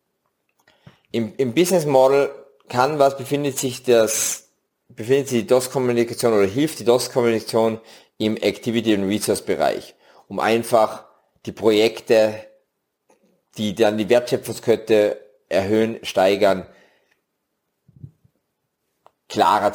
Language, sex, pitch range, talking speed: German, male, 105-130 Hz, 95 wpm